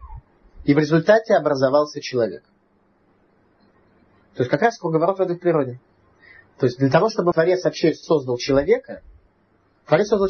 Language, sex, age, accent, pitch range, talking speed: Russian, male, 30-49, native, 135-185 Hz, 140 wpm